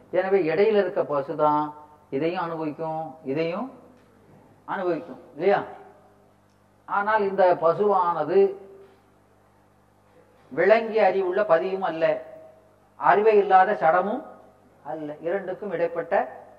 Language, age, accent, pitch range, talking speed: Tamil, 40-59, native, 130-175 Hz, 75 wpm